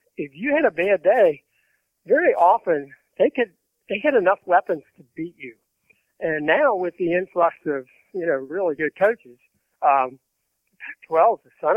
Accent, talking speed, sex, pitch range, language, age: American, 165 wpm, male, 145-180 Hz, English, 60-79